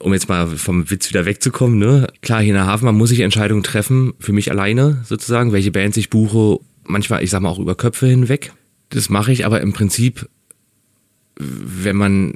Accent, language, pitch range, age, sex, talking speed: German, German, 95-120 Hz, 30-49, male, 200 wpm